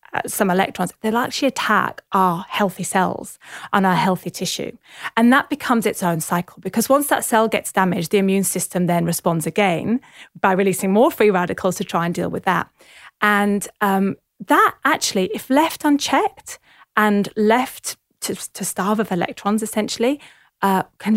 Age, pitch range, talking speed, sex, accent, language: 30-49, 185-240 Hz, 165 wpm, female, British, English